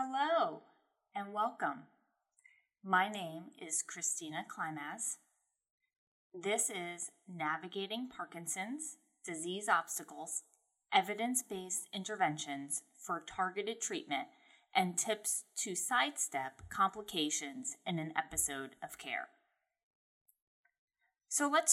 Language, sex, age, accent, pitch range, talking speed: English, female, 20-39, American, 175-250 Hz, 90 wpm